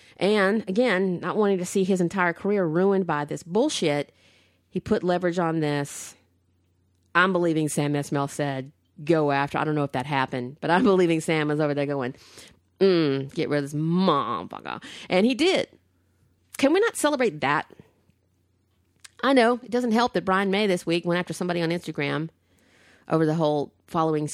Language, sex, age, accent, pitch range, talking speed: English, female, 40-59, American, 145-190 Hz, 180 wpm